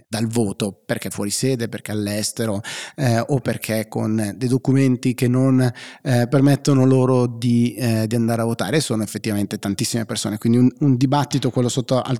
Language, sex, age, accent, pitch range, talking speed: Italian, male, 30-49, native, 105-130 Hz, 165 wpm